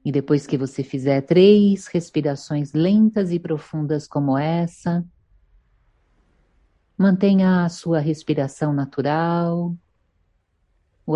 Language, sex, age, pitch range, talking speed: Portuguese, female, 50-69, 140-180 Hz, 95 wpm